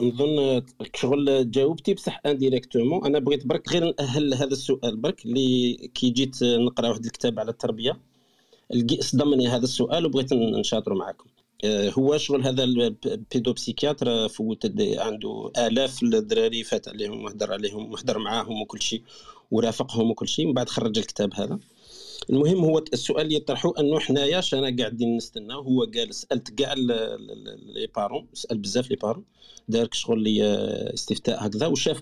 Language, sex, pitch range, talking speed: Arabic, male, 120-145 Hz, 145 wpm